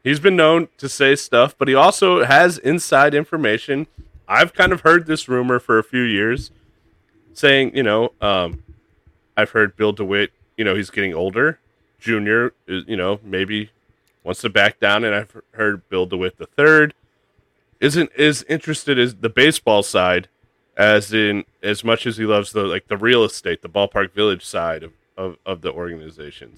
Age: 30-49